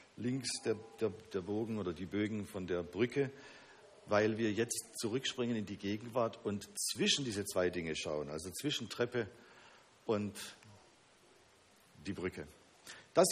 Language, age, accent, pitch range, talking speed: German, 50-69, German, 95-120 Hz, 140 wpm